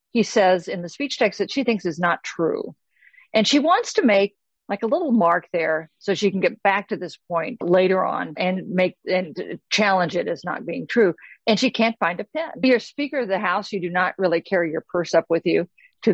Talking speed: 240 wpm